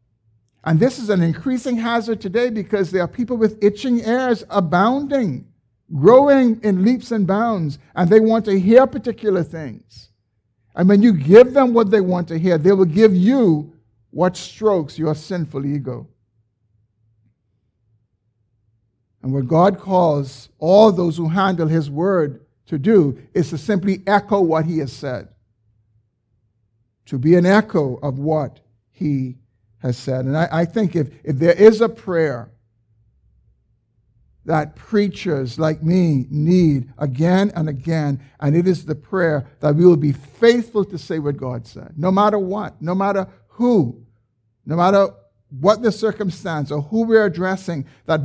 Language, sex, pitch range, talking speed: English, male, 115-195 Hz, 155 wpm